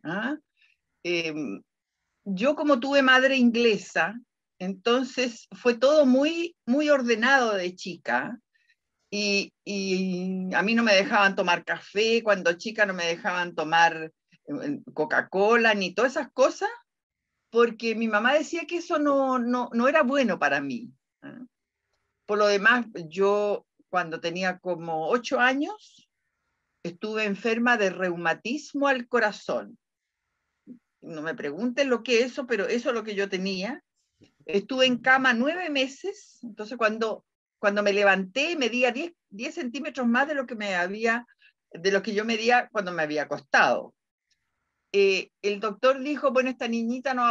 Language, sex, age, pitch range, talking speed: Spanish, female, 50-69, 200-270 Hz, 140 wpm